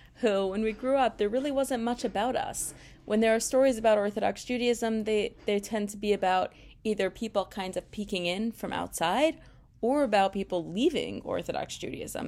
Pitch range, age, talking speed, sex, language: 190-245 Hz, 30-49, 185 wpm, female, English